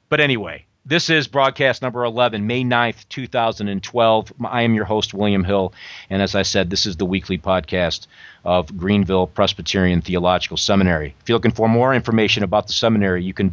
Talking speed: 180 wpm